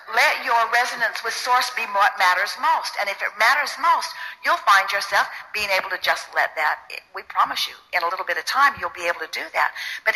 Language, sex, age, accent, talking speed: English, female, 50-69, American, 230 wpm